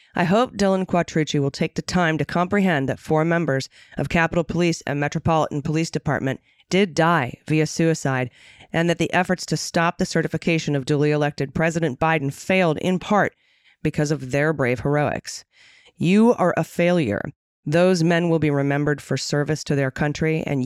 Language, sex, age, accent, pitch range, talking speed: English, female, 30-49, American, 145-175 Hz, 175 wpm